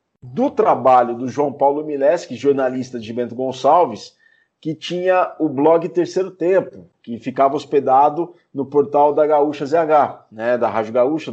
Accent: Brazilian